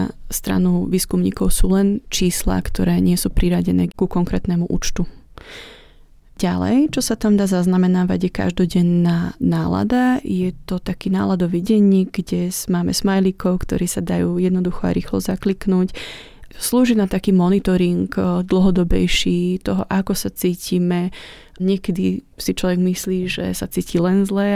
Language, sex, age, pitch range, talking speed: Slovak, female, 20-39, 170-195 Hz, 130 wpm